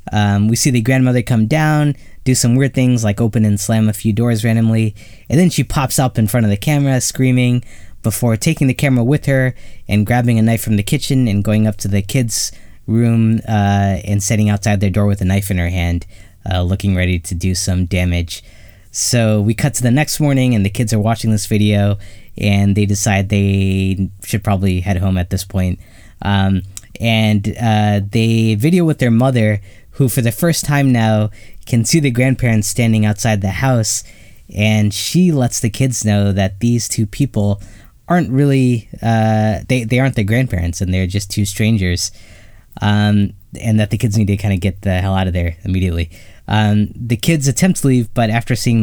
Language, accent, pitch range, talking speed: English, American, 100-120 Hz, 200 wpm